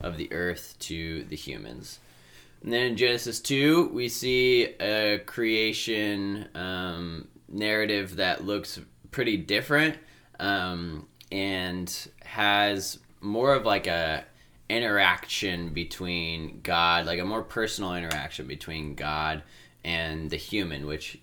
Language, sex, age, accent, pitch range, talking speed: English, male, 20-39, American, 75-90 Hz, 120 wpm